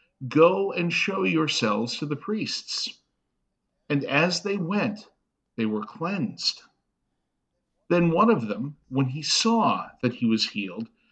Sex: male